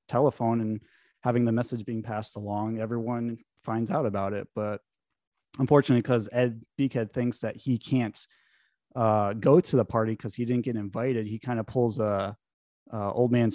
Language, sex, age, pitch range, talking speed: English, male, 20-39, 105-125 Hz, 175 wpm